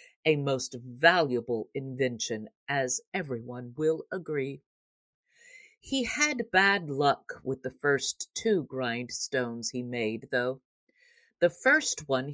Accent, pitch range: American, 140-220 Hz